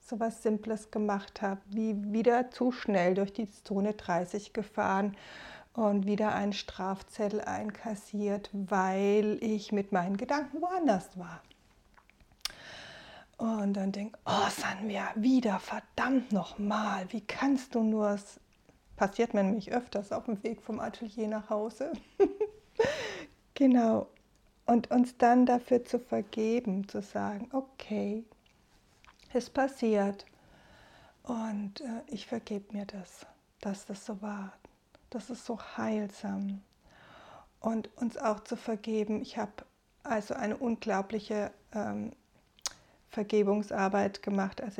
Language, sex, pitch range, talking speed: German, female, 200-230 Hz, 125 wpm